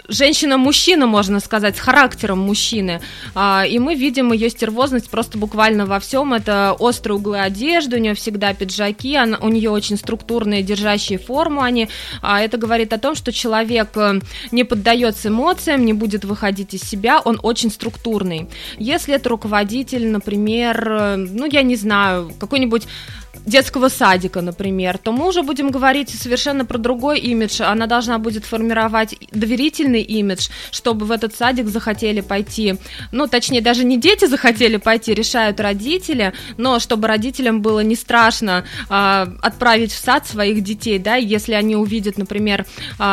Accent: native